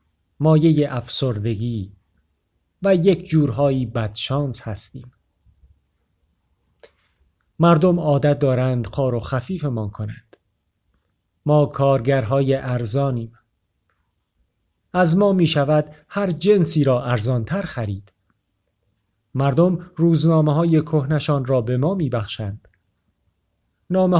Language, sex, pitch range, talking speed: Persian, male, 100-145 Hz, 90 wpm